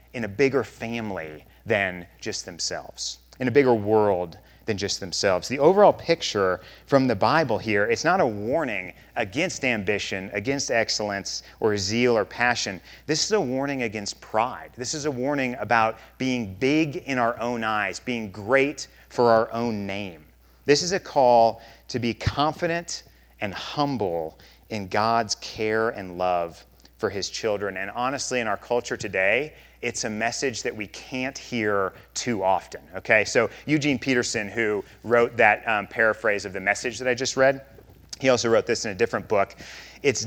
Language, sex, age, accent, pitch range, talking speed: English, male, 30-49, American, 100-135 Hz, 170 wpm